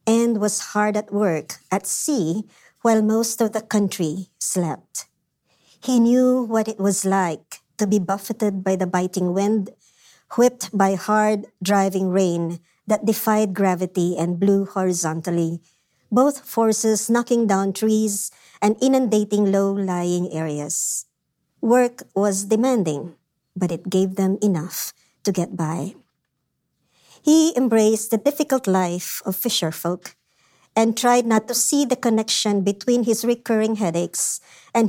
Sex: male